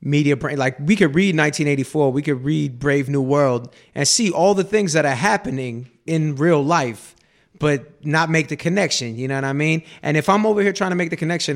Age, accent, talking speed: 20-39, American, 230 wpm